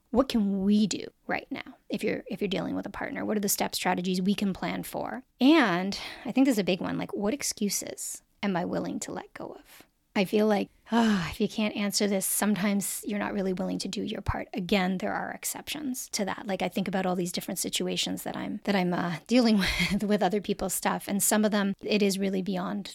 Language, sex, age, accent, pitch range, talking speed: English, female, 30-49, American, 190-220 Hz, 240 wpm